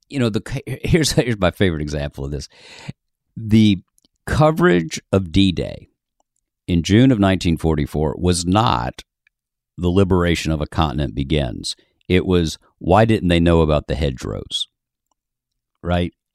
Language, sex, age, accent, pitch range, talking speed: English, male, 50-69, American, 80-105 Hz, 130 wpm